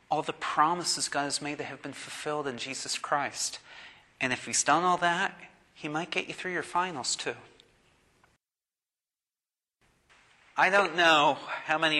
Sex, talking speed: male, 160 wpm